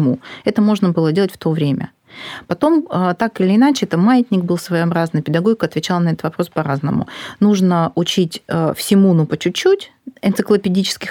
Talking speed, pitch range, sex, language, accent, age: 150 wpm, 170-215 Hz, female, Russian, native, 30-49